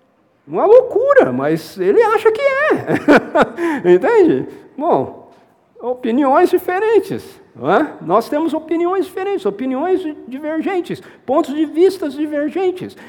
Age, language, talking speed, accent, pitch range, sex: 50-69, Portuguese, 105 wpm, Brazilian, 185-310 Hz, male